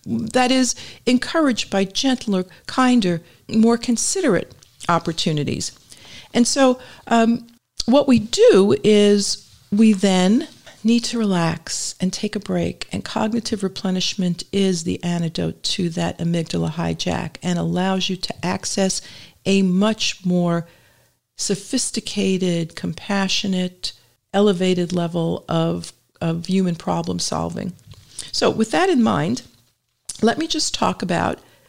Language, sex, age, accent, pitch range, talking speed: English, female, 50-69, American, 170-225 Hz, 115 wpm